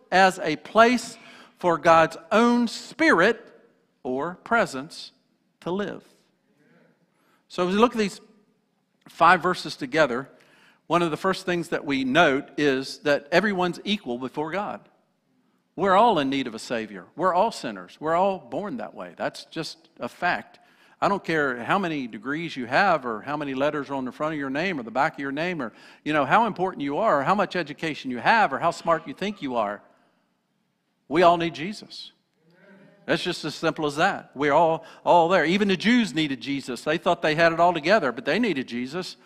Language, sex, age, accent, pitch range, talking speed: English, male, 50-69, American, 140-200 Hz, 195 wpm